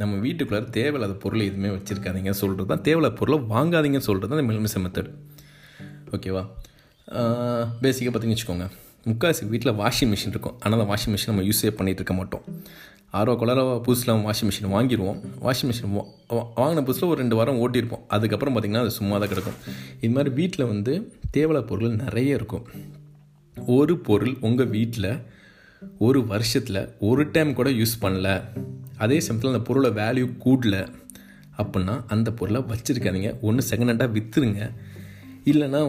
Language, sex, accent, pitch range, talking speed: Tamil, male, native, 100-130 Hz, 145 wpm